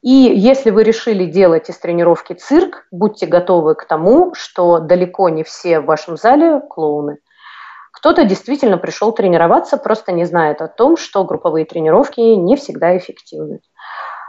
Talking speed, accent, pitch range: 145 wpm, native, 180-260 Hz